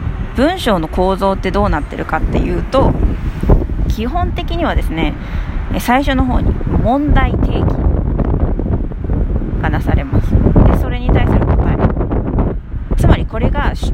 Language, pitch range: Japanese, 145-235 Hz